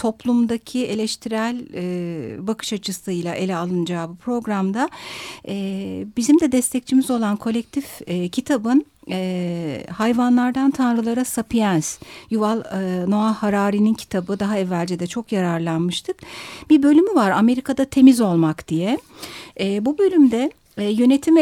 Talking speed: 120 wpm